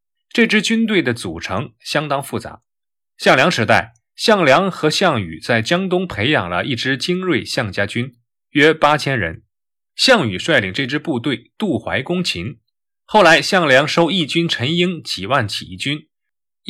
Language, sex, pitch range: Chinese, male, 115-175 Hz